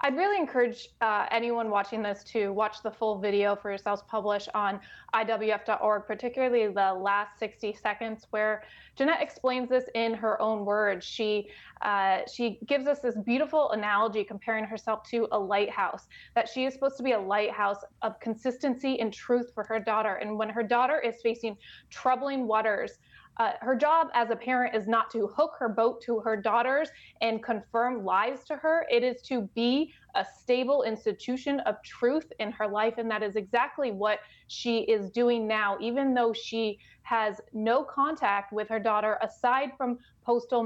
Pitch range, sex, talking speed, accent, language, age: 215-255 Hz, female, 175 wpm, American, English, 20-39